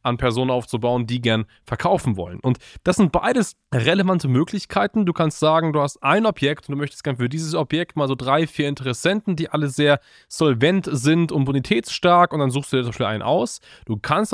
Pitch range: 125-160 Hz